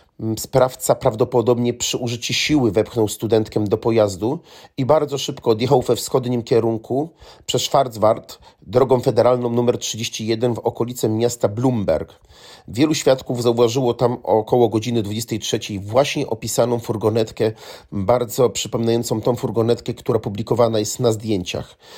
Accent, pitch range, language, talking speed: native, 110-125 Hz, Polish, 125 wpm